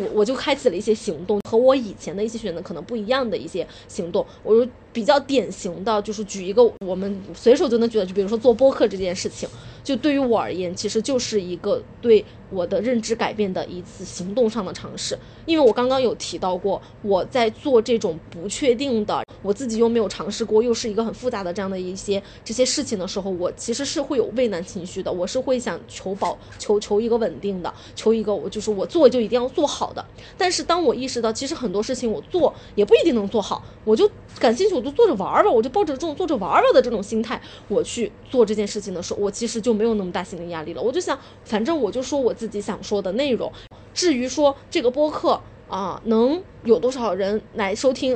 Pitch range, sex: 205-265 Hz, female